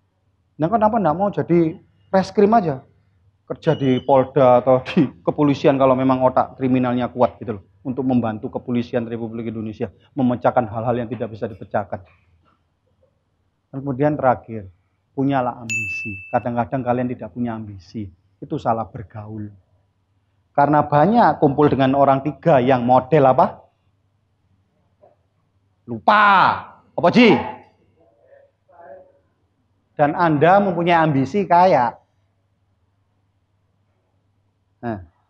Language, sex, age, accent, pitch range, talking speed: Indonesian, male, 40-59, native, 100-150 Hz, 100 wpm